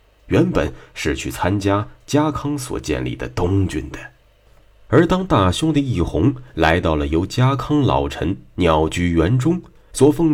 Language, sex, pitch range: Chinese, male, 80-125 Hz